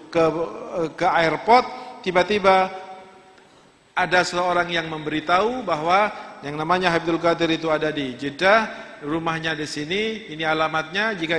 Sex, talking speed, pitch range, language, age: male, 120 wpm, 170-220 Hz, Indonesian, 50-69